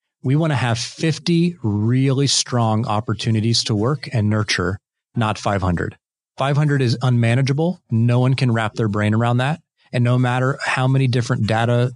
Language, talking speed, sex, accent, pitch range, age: English, 160 wpm, male, American, 105-135 Hz, 30-49